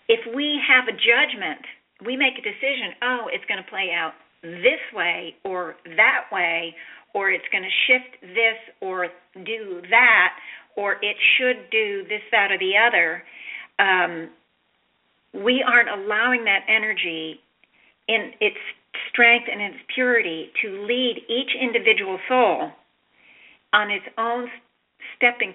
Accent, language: American, English